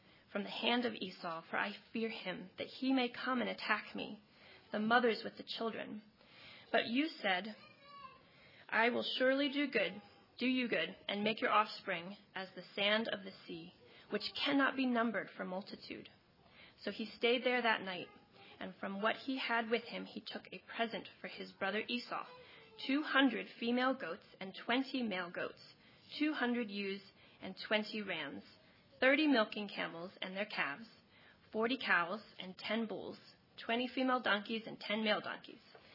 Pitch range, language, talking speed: 205-255 Hz, English, 165 wpm